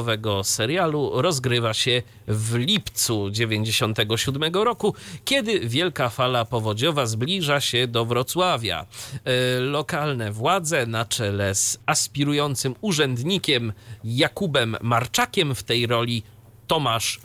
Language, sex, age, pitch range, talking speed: Polish, male, 40-59, 115-155 Hz, 95 wpm